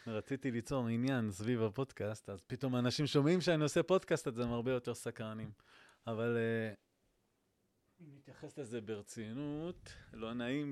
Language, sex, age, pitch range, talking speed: Hebrew, male, 20-39, 105-125 Hz, 140 wpm